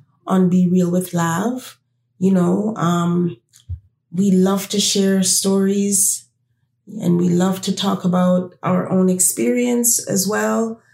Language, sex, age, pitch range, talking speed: English, female, 30-49, 165-200 Hz, 130 wpm